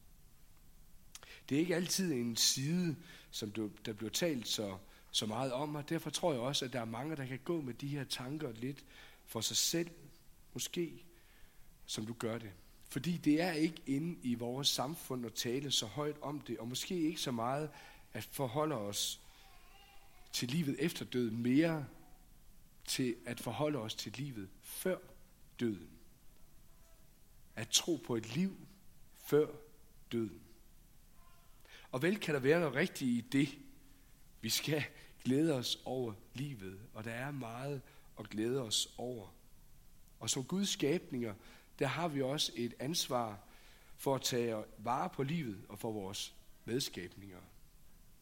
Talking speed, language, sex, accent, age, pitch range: 155 wpm, Danish, male, native, 60-79, 110-150 Hz